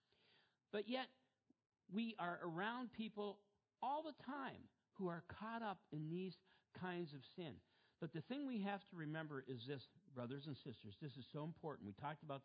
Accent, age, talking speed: American, 50-69, 180 wpm